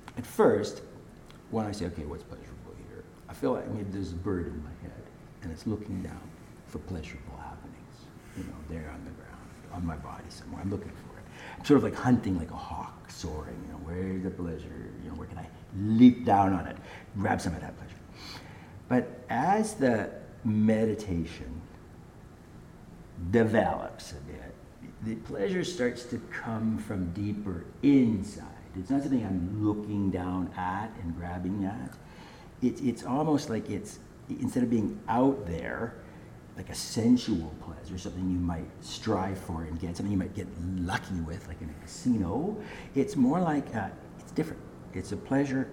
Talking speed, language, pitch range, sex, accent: 170 wpm, English, 85-115 Hz, male, American